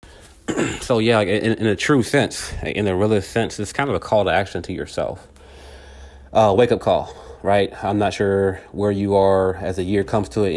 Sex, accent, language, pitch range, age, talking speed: male, American, English, 95-105 Hz, 30-49, 210 wpm